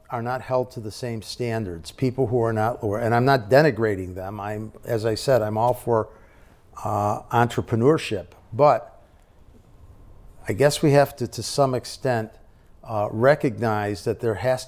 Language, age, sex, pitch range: English, 50-69, male, 100-120 Hz